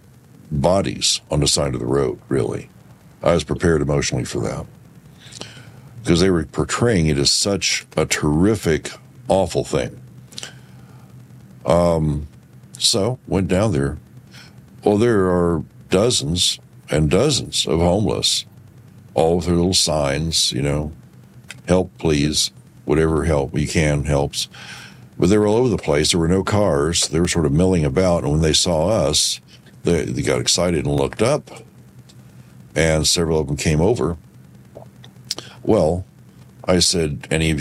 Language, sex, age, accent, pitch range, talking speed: English, male, 60-79, American, 70-90 Hz, 145 wpm